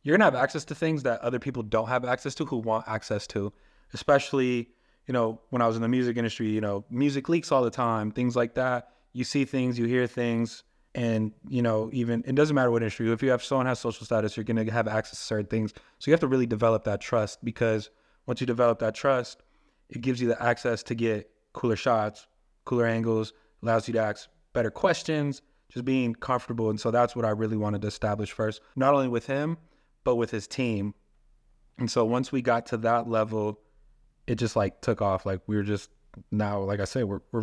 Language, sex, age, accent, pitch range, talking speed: English, male, 20-39, American, 110-135 Hz, 225 wpm